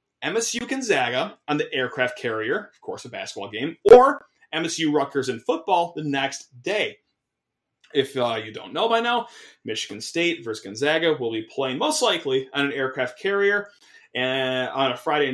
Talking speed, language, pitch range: 160 wpm, English, 130-195 Hz